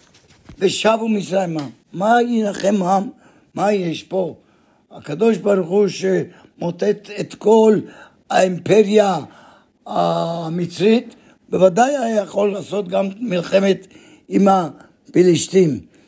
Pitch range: 190-220 Hz